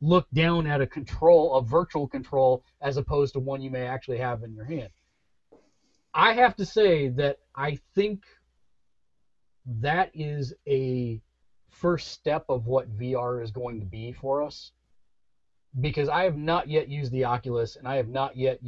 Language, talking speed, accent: English, 170 wpm, American